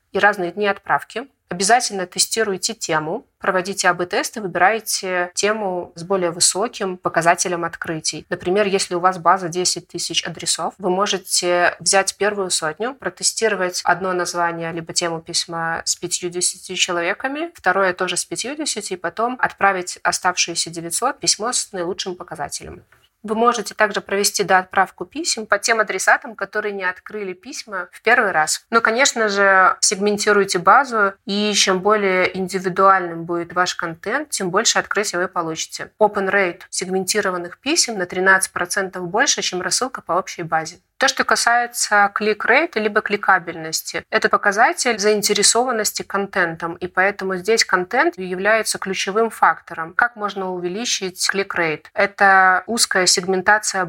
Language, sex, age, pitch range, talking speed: Russian, female, 30-49, 180-210 Hz, 135 wpm